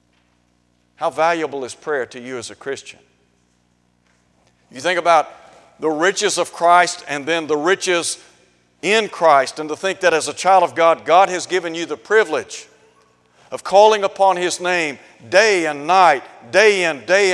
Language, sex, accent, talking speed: English, male, American, 165 wpm